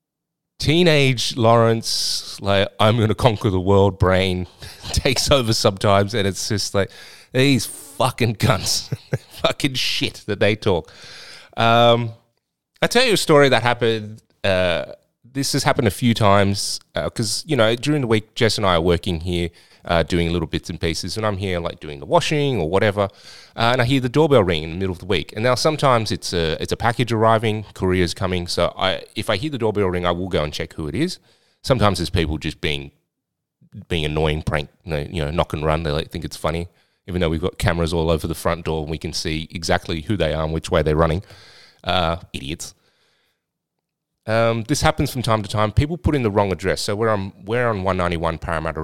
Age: 30-49